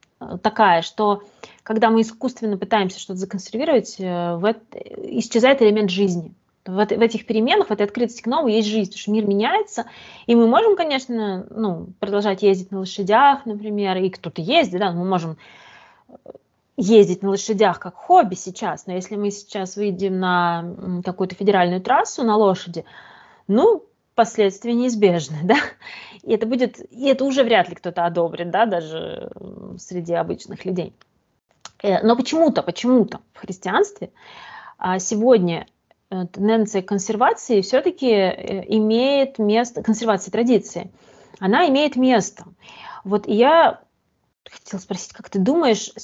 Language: Russian